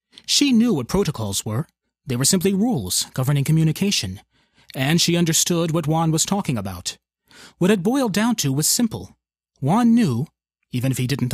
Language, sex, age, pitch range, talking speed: English, male, 30-49, 125-180 Hz, 170 wpm